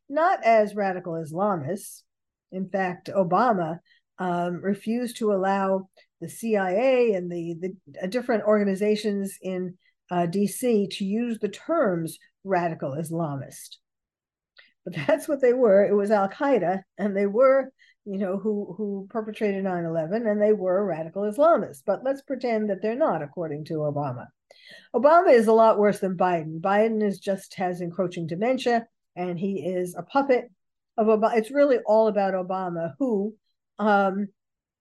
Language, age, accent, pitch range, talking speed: English, 50-69, American, 185-240 Hz, 145 wpm